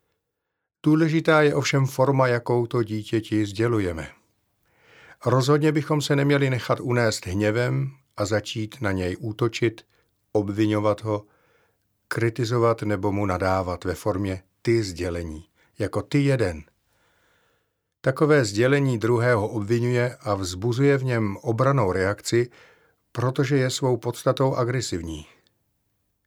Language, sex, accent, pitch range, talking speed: Czech, male, native, 100-130 Hz, 110 wpm